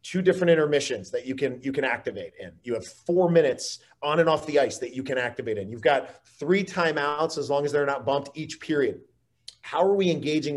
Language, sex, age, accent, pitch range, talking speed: English, male, 30-49, American, 130-175 Hz, 225 wpm